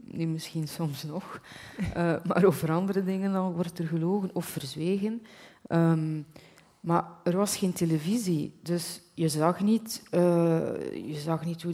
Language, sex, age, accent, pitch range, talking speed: Dutch, female, 30-49, Dutch, 150-180 Hz, 160 wpm